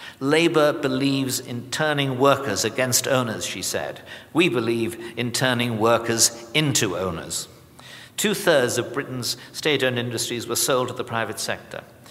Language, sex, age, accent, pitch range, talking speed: English, male, 60-79, British, 115-140 Hz, 135 wpm